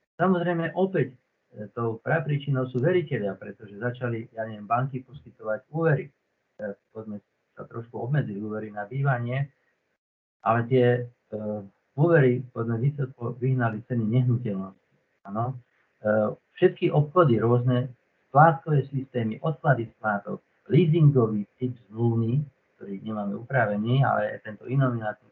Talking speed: 115 wpm